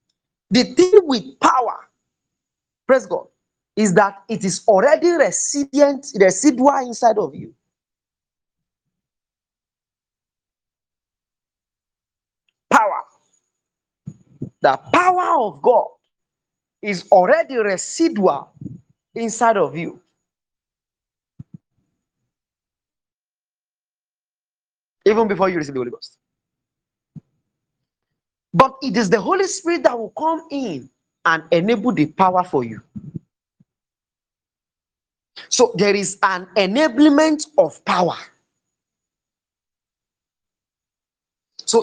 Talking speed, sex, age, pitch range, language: 80 wpm, male, 40-59, 190-285 Hz, English